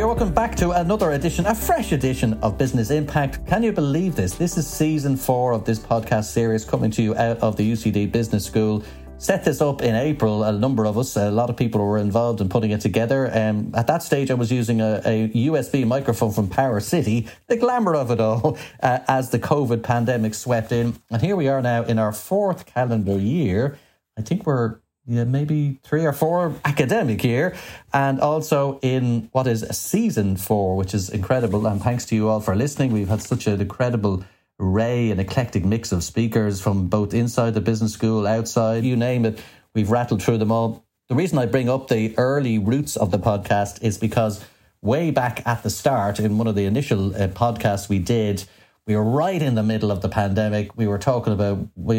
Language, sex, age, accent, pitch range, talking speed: English, male, 30-49, Irish, 110-130 Hz, 210 wpm